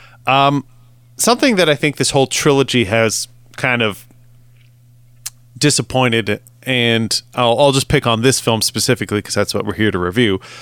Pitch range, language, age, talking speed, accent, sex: 110-135 Hz, English, 30-49, 160 wpm, American, male